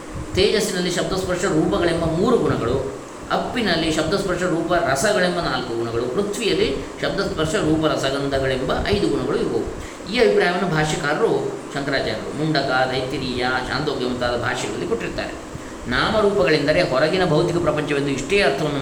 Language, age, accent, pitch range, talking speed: Kannada, 20-39, native, 135-180 Hz, 105 wpm